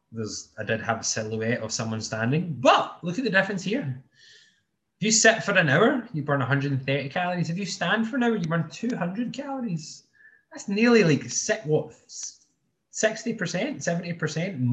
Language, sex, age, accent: English, male, 20-39, British